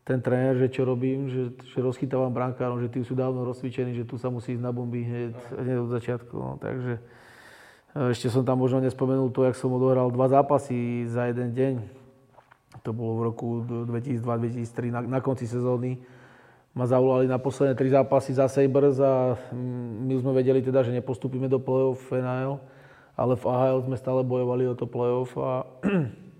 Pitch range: 120-130 Hz